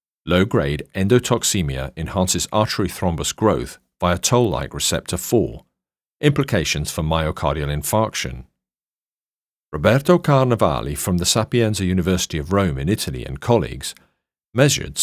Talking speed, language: 110 wpm, English